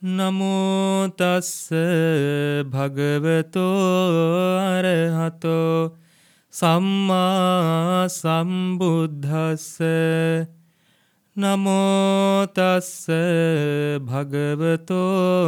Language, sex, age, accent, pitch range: English, male, 30-49, Indian, 165-185 Hz